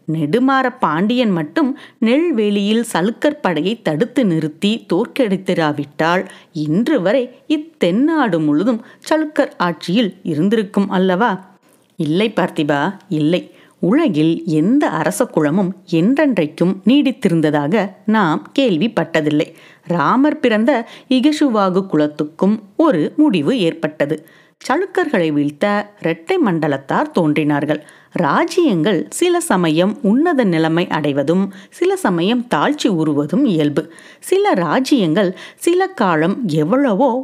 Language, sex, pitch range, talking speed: Tamil, female, 165-270 Hz, 90 wpm